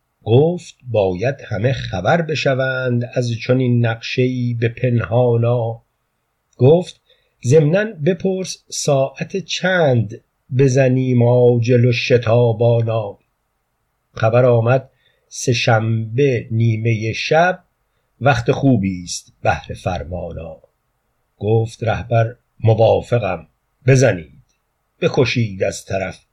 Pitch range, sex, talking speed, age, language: 120-145 Hz, male, 80 wpm, 50-69, Persian